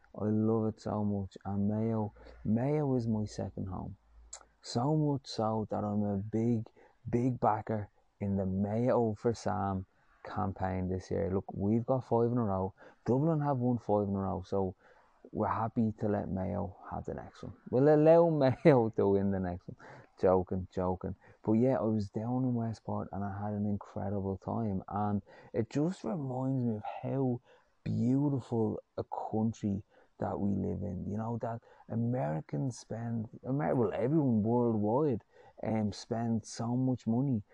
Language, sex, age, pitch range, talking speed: English, male, 20-39, 105-125 Hz, 165 wpm